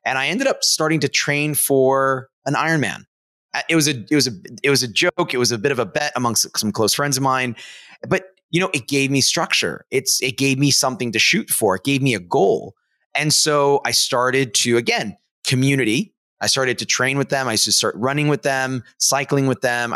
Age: 30-49